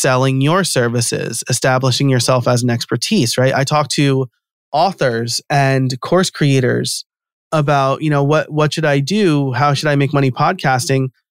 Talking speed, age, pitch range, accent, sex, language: 160 wpm, 30-49, 130-165 Hz, American, male, English